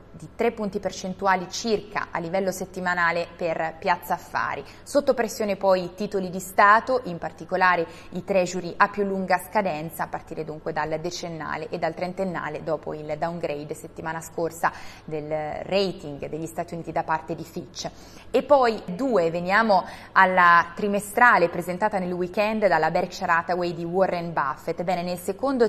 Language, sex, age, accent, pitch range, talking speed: Italian, female, 20-39, native, 170-195 Hz, 155 wpm